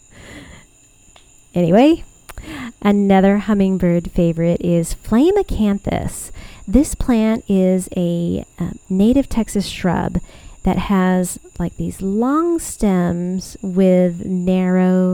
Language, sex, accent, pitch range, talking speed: English, female, American, 175-210 Hz, 90 wpm